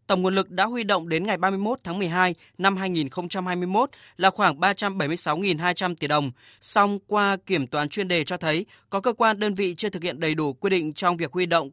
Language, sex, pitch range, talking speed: Vietnamese, male, 160-205 Hz, 215 wpm